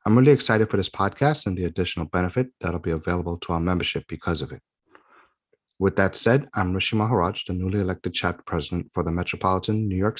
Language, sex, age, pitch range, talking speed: English, male, 30-49, 85-110 Hz, 210 wpm